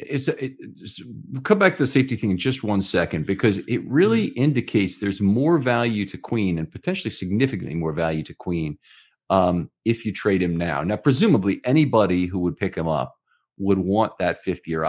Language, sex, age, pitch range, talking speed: English, male, 40-59, 90-110 Hz, 190 wpm